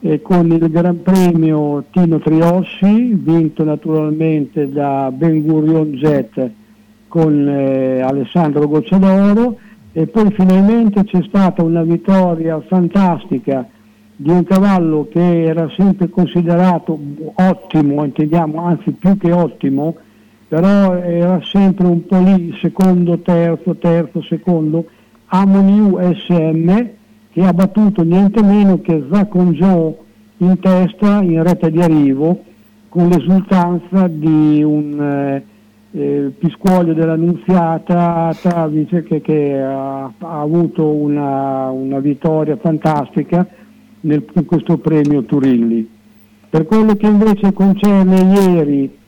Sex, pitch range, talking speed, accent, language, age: male, 150-185 Hz, 110 wpm, native, Italian, 60-79